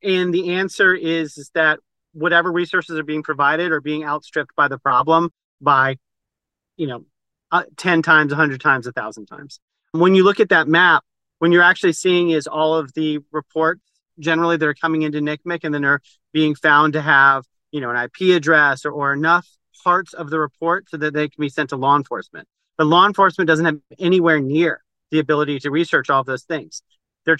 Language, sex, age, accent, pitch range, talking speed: English, male, 40-59, American, 145-165 Hz, 200 wpm